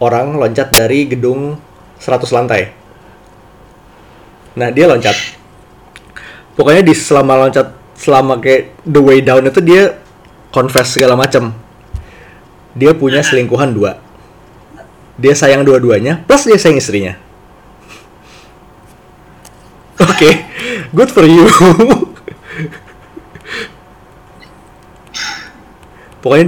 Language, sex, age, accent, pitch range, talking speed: Indonesian, male, 20-39, native, 125-175 Hz, 90 wpm